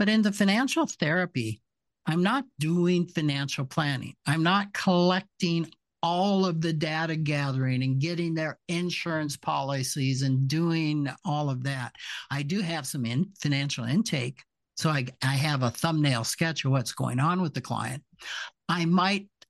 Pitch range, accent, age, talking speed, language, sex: 130-165 Hz, American, 60-79, 155 wpm, English, male